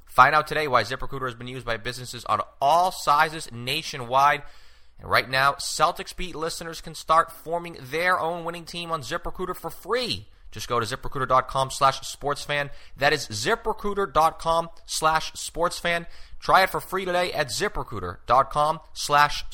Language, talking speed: English, 150 wpm